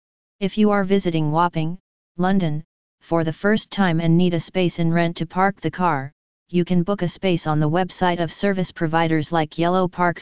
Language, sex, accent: English, female, American